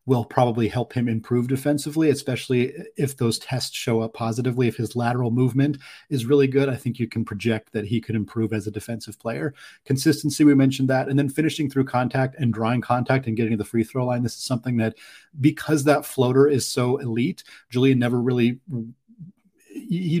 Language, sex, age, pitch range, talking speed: English, male, 30-49, 115-140 Hz, 195 wpm